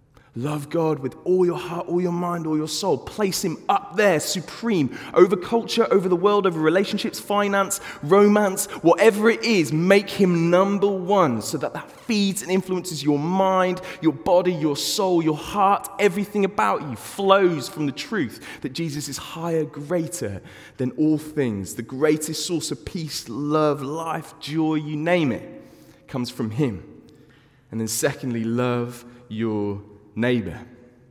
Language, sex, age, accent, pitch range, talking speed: English, male, 20-39, British, 130-180 Hz, 160 wpm